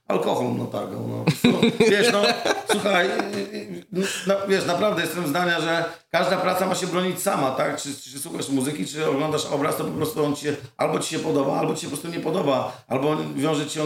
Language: Polish